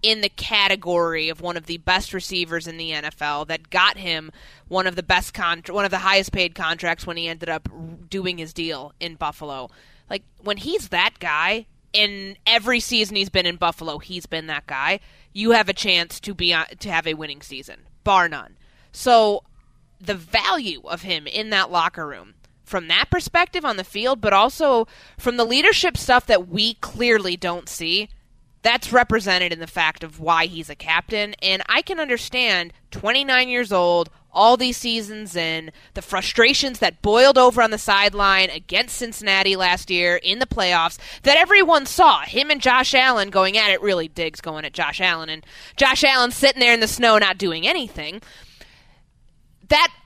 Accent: American